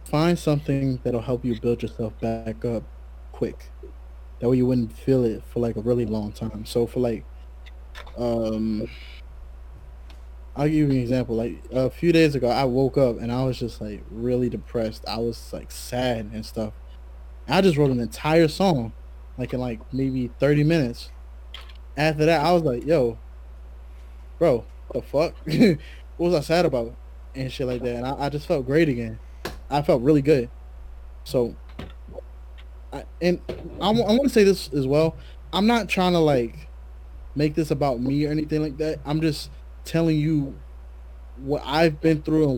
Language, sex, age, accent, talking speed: English, male, 20-39, American, 175 wpm